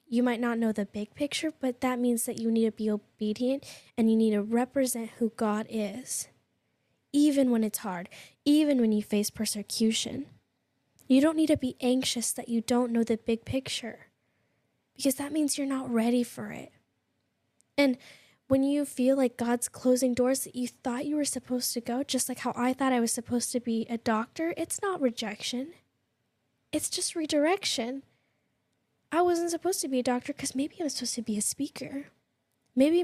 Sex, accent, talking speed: female, American, 190 wpm